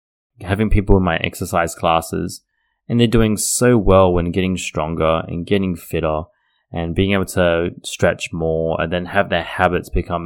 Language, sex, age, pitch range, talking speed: English, male, 20-39, 85-105 Hz, 170 wpm